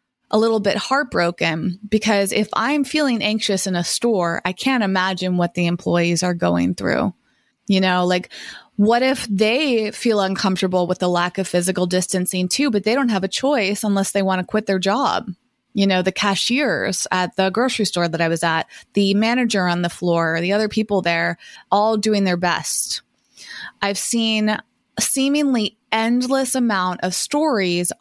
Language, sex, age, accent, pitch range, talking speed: English, female, 20-39, American, 185-230 Hz, 175 wpm